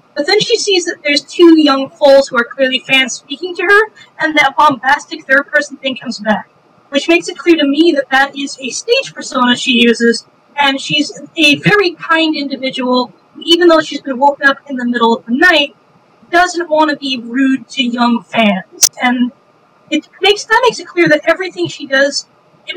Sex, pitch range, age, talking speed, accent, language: female, 255-310 Hz, 40-59, 205 wpm, American, English